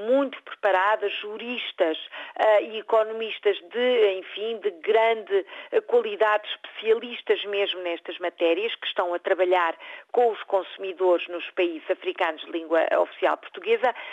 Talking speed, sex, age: 120 wpm, female, 50-69